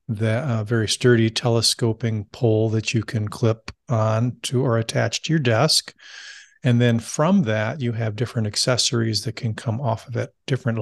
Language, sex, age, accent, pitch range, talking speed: English, male, 50-69, American, 110-125 Hz, 175 wpm